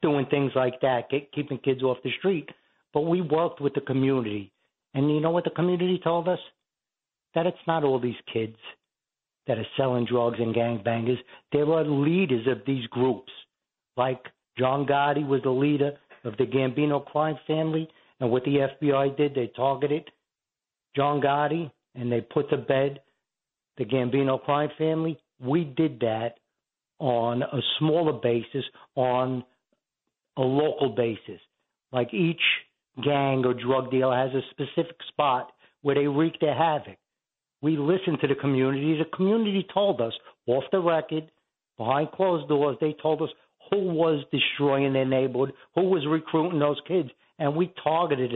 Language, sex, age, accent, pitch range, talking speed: English, male, 60-79, American, 130-160 Hz, 160 wpm